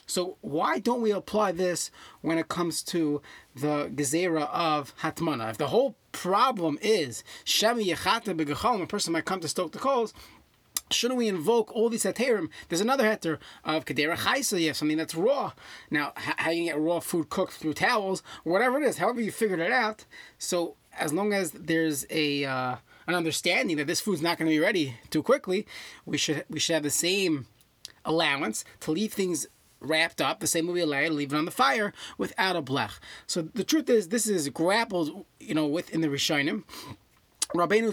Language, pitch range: English, 155-205 Hz